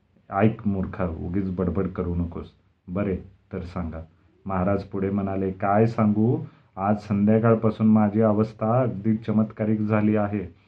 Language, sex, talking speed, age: Marathi, male, 110 wpm, 40-59